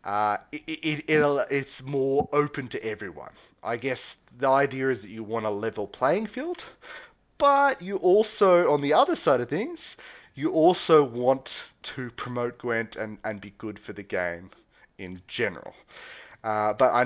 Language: English